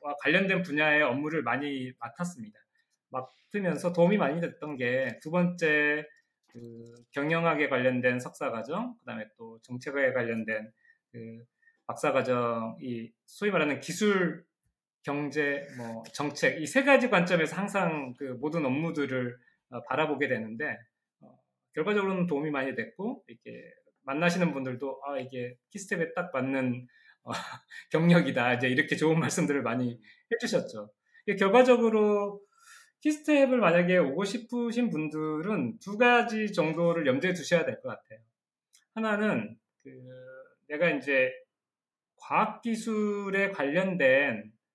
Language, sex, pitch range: Korean, male, 130-205 Hz